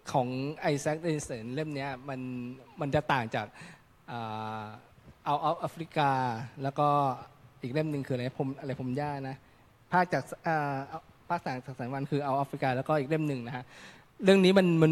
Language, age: Thai, 20-39